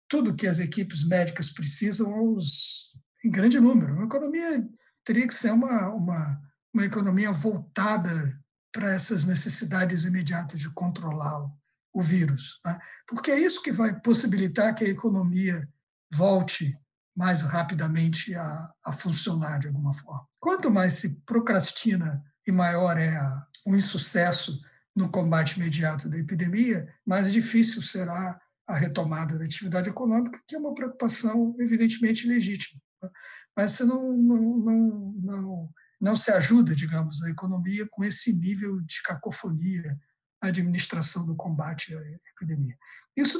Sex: male